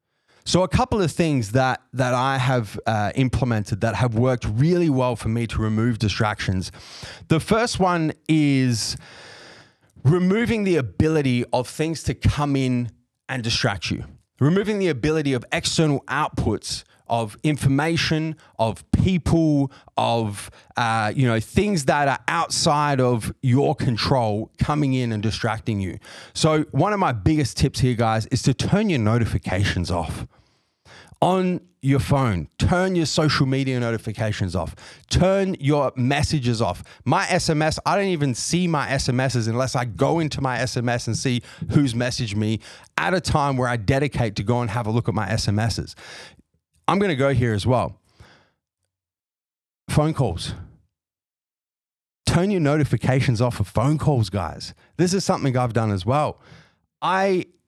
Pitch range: 115-150 Hz